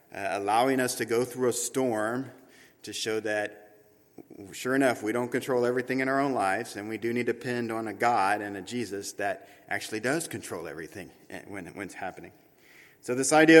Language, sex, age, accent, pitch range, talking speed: English, male, 40-59, American, 95-120 Hz, 200 wpm